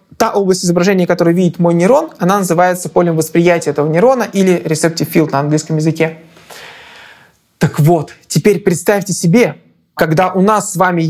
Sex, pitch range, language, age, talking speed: male, 165-205 Hz, Russian, 20-39, 155 wpm